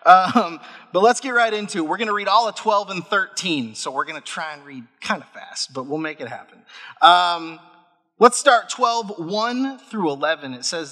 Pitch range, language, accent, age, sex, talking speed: 160-215 Hz, English, American, 30-49, male, 220 wpm